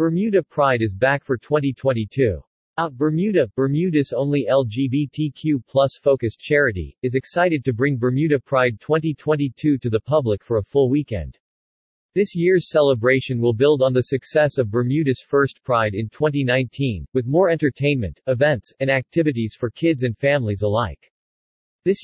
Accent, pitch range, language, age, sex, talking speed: American, 120-150 Hz, English, 40-59, male, 145 wpm